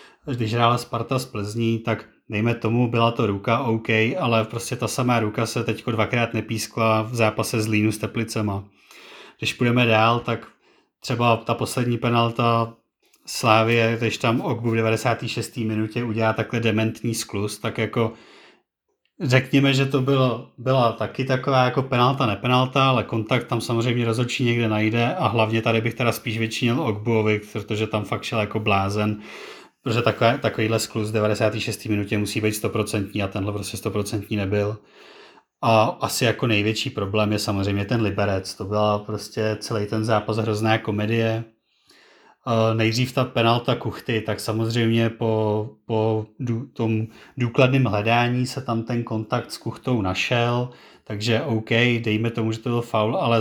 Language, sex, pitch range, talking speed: Czech, male, 110-120 Hz, 155 wpm